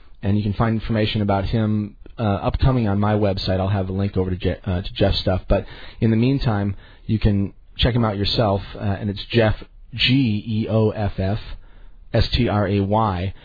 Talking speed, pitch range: 170 wpm, 100-115 Hz